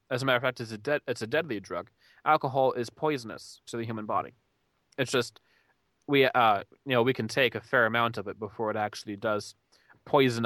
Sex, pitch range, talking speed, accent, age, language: male, 110-140 Hz, 220 wpm, American, 20-39, English